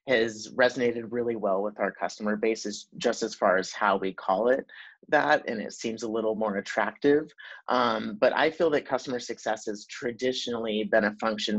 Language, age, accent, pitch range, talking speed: English, 30-49, American, 105-125 Hz, 185 wpm